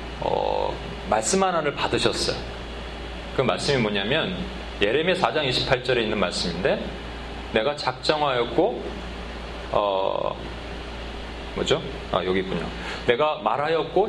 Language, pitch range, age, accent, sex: Korean, 130-190 Hz, 30-49, native, male